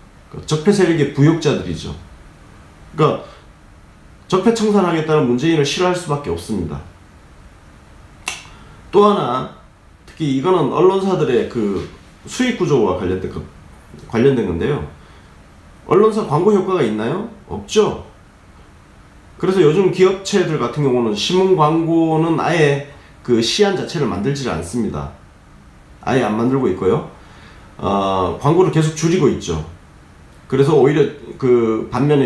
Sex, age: male, 40-59